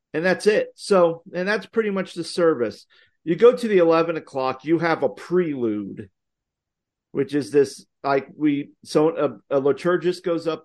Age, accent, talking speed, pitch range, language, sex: 50-69, American, 175 wpm, 130-160 Hz, English, male